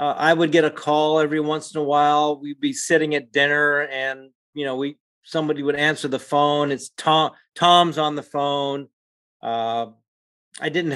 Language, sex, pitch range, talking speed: English, male, 135-175 Hz, 185 wpm